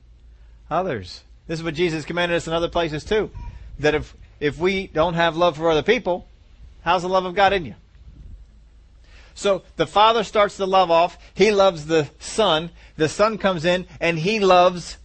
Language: English